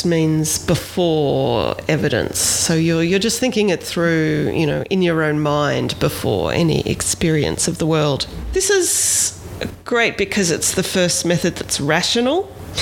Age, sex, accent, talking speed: 40-59, female, Australian, 150 wpm